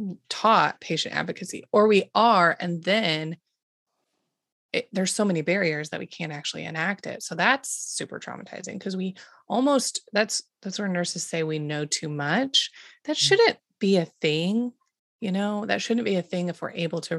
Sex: female